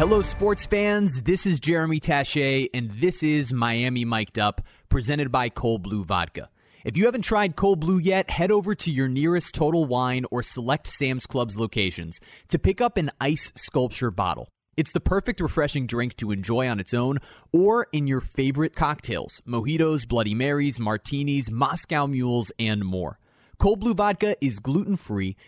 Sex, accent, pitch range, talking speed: male, American, 110-155 Hz, 170 wpm